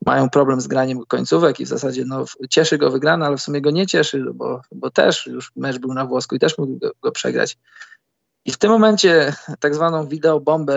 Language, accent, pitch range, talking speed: Polish, native, 135-155 Hz, 210 wpm